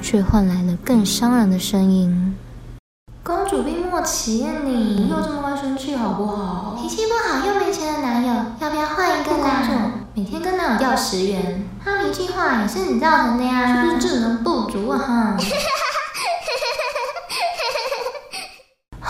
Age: 20-39